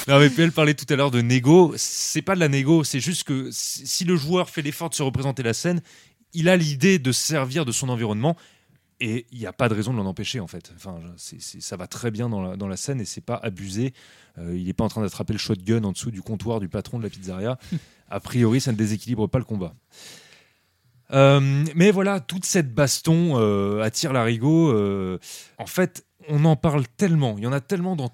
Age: 30-49